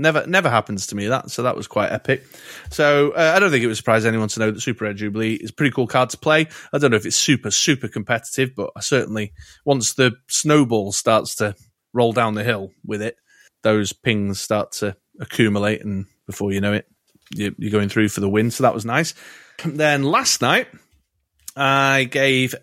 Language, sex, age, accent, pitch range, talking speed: English, male, 30-49, British, 105-130 Hz, 210 wpm